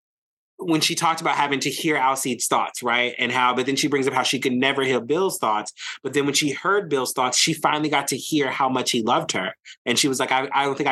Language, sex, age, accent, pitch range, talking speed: English, male, 30-49, American, 120-145 Hz, 270 wpm